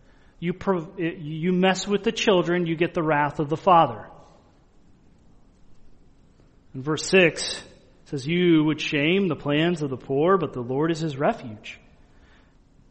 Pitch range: 150-195 Hz